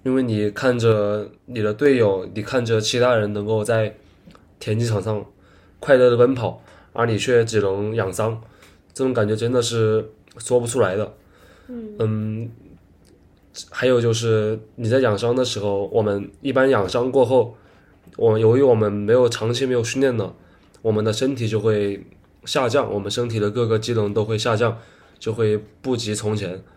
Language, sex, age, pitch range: English, male, 20-39, 100-120 Hz